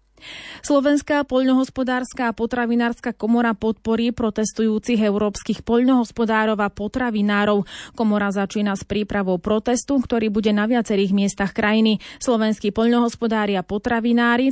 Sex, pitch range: female, 205-240 Hz